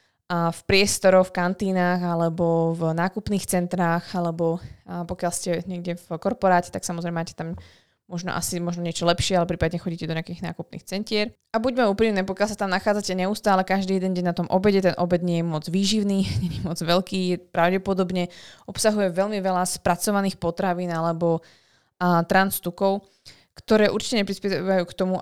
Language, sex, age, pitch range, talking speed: Slovak, female, 20-39, 170-195 Hz, 165 wpm